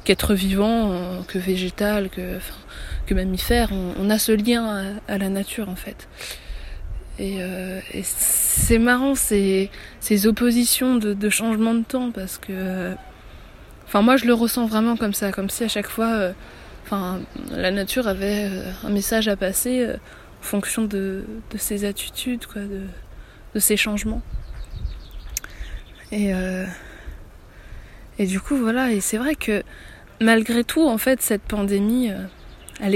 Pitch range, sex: 195-230 Hz, female